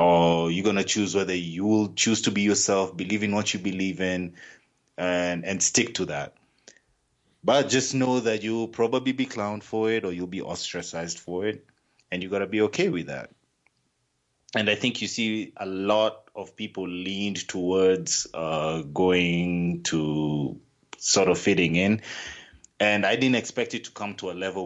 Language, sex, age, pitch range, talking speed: English, male, 30-49, 90-110 Hz, 185 wpm